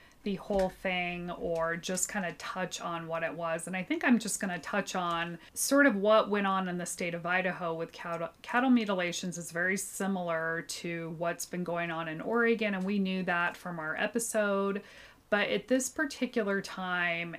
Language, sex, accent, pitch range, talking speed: English, female, American, 165-210 Hz, 195 wpm